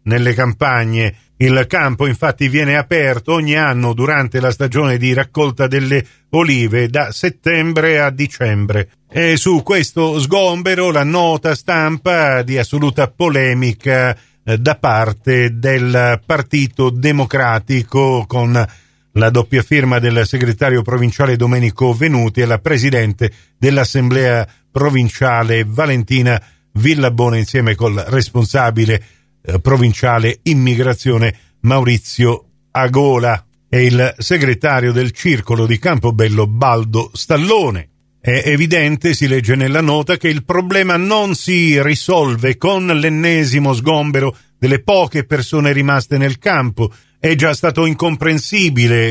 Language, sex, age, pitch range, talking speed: Italian, male, 50-69, 120-150 Hz, 110 wpm